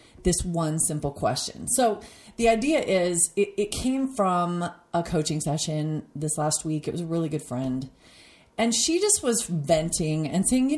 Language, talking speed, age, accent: English, 180 wpm, 30-49, American